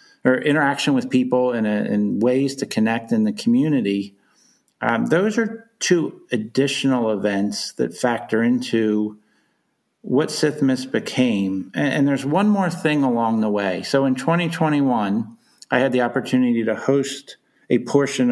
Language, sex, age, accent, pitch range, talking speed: English, male, 50-69, American, 110-145 Hz, 145 wpm